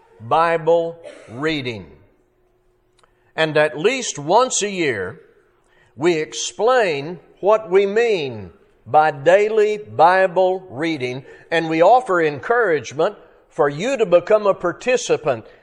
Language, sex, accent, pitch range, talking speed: English, male, American, 165-240 Hz, 105 wpm